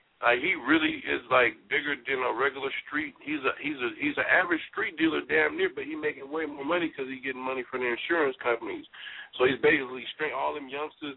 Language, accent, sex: English, American, male